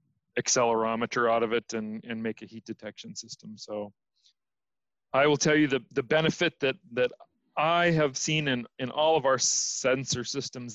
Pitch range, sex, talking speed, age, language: 120-140 Hz, male, 175 wpm, 40-59, English